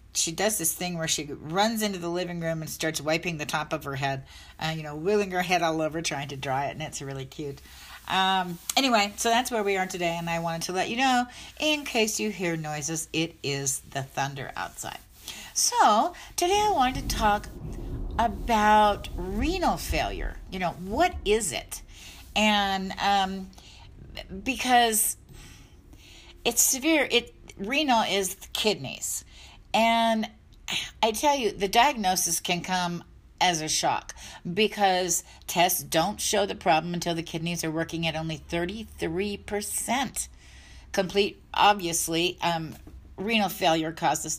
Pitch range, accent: 165-225 Hz, American